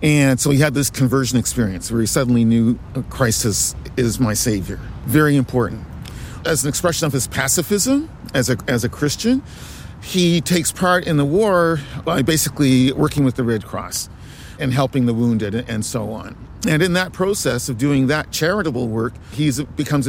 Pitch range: 115-140 Hz